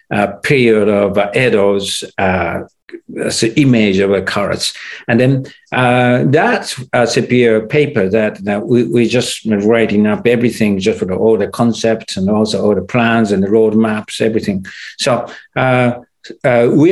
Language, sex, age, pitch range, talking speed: English, male, 60-79, 110-130 Hz, 155 wpm